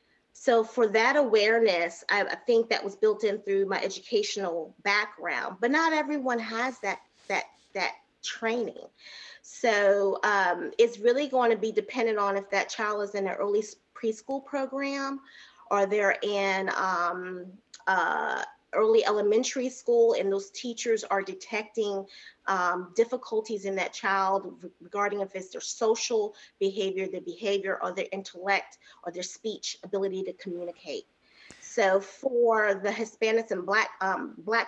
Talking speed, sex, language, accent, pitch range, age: 145 wpm, female, English, American, 195-230 Hz, 30-49